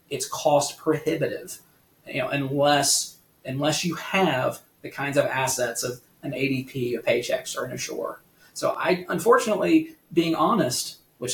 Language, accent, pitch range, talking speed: English, American, 130-165 Hz, 145 wpm